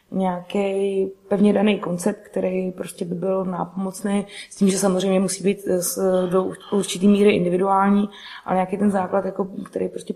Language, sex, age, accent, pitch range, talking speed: Czech, female, 20-39, native, 185-210 Hz, 155 wpm